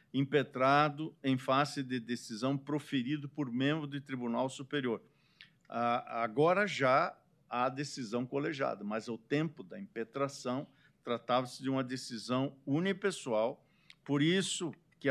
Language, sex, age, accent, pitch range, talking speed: Portuguese, male, 50-69, Brazilian, 120-150 Hz, 115 wpm